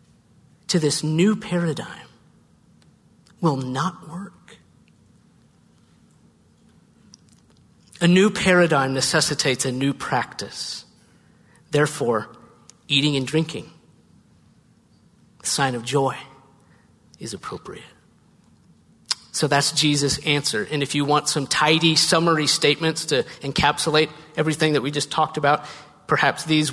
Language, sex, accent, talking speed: English, male, American, 105 wpm